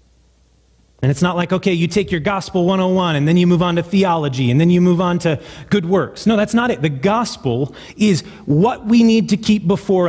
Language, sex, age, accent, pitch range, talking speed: English, male, 30-49, American, 110-175 Hz, 225 wpm